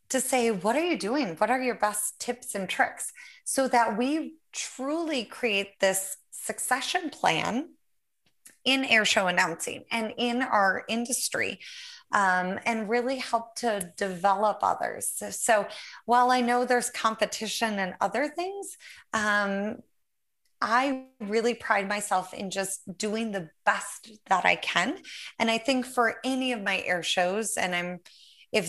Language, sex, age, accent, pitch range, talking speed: English, female, 20-39, American, 200-260 Hz, 150 wpm